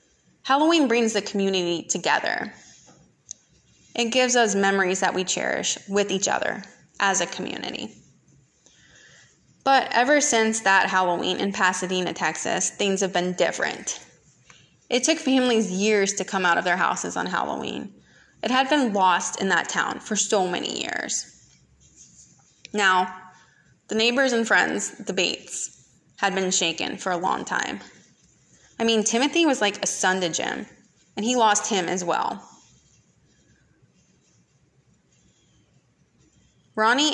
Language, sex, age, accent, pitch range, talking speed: English, female, 20-39, American, 185-225 Hz, 135 wpm